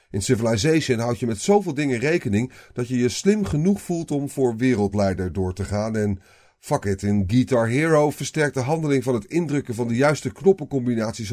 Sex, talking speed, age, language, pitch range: male, 190 wpm, 40-59, Dutch, 100-145 Hz